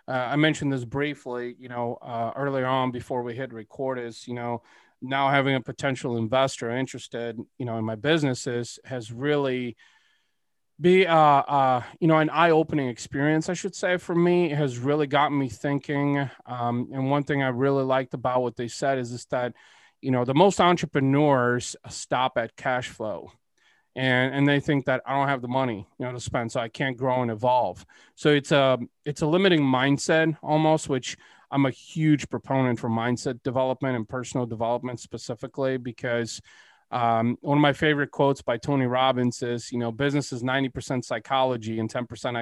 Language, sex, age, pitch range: English, male, 30-49, 125-150 Hz